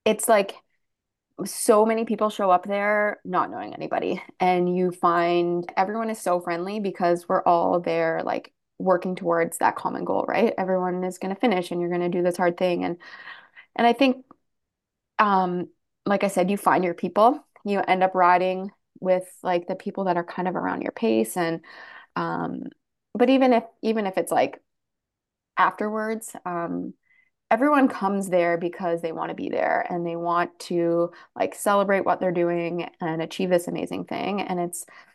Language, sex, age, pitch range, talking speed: English, female, 20-39, 175-200 Hz, 180 wpm